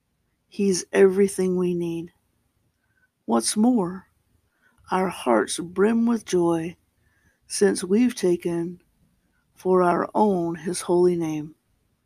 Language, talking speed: English, 100 wpm